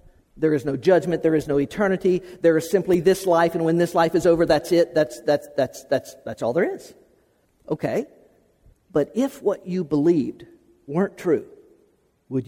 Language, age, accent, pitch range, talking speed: English, 50-69, American, 150-220 Hz, 185 wpm